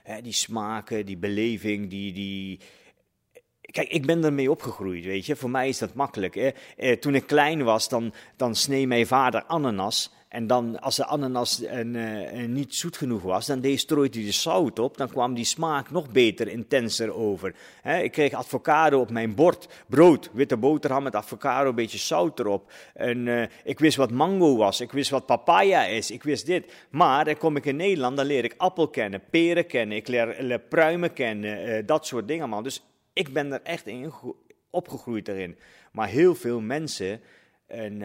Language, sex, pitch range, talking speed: Dutch, male, 105-140 Hz, 195 wpm